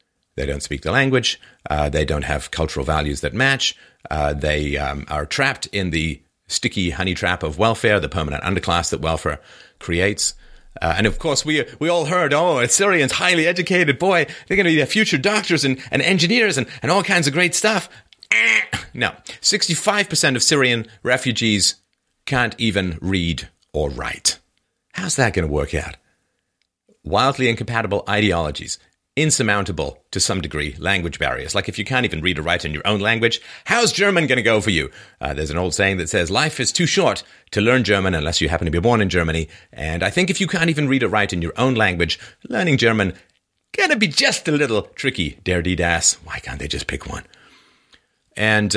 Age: 40-59